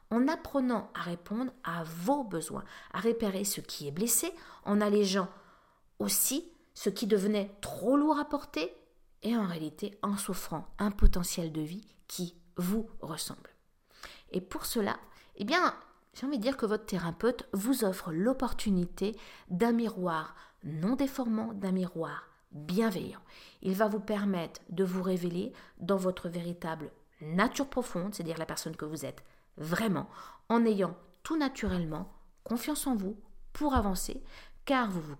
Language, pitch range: French, 180-240 Hz